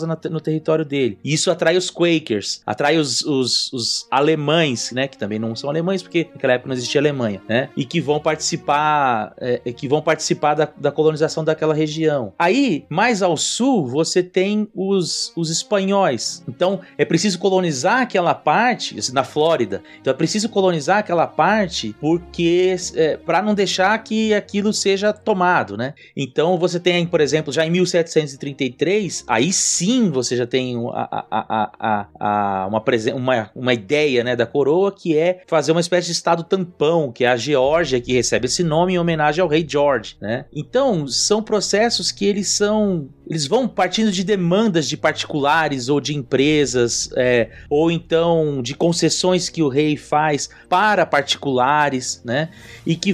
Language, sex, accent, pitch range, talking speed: Portuguese, male, Brazilian, 130-180 Hz, 160 wpm